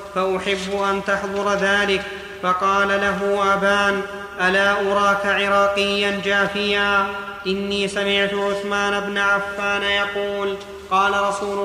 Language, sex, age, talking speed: Arabic, male, 30-49, 100 wpm